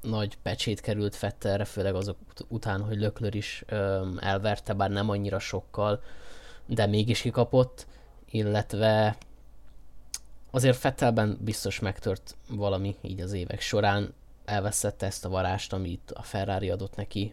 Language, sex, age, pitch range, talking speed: Hungarian, male, 20-39, 100-110 Hz, 135 wpm